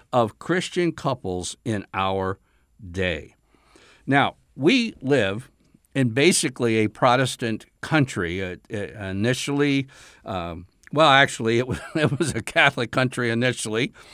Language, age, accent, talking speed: English, 60-79, American, 105 wpm